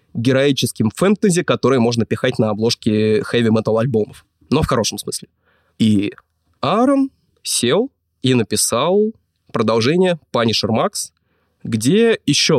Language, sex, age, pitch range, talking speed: Russian, male, 20-39, 110-145 Hz, 105 wpm